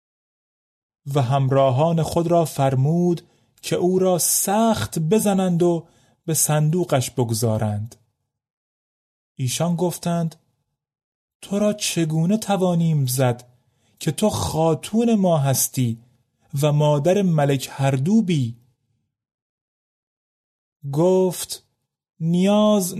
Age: 30-49